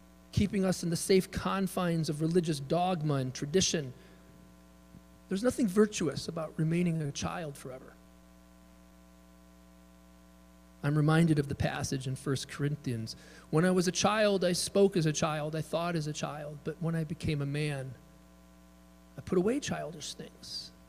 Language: English